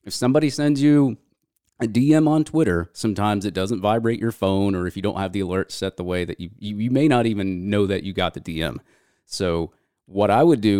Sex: male